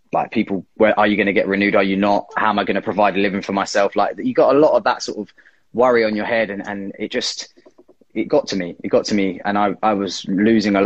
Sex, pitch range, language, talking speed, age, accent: male, 100-115 Hz, English, 295 wpm, 20-39, British